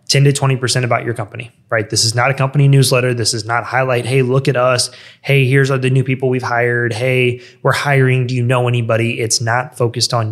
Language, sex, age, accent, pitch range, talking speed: English, male, 20-39, American, 115-130 Hz, 235 wpm